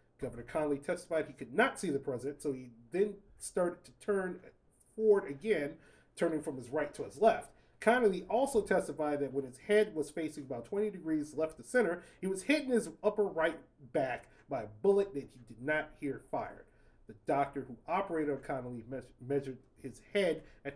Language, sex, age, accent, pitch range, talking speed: English, male, 30-49, American, 135-175 Hz, 190 wpm